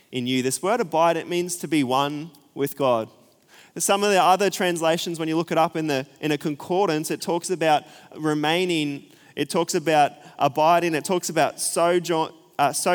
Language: English